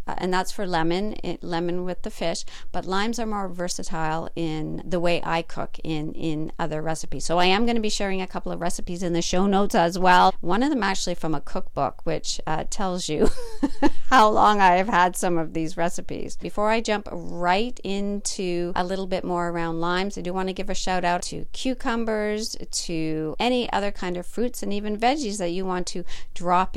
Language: English